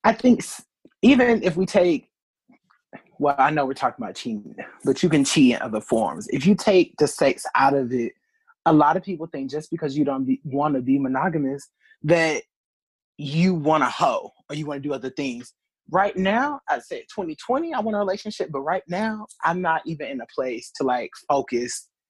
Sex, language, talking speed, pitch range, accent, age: male, English, 205 wpm, 145-220 Hz, American, 20-39